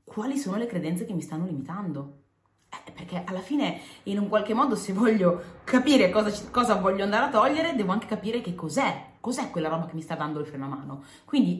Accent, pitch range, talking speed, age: native, 175-240 Hz, 215 wpm, 20-39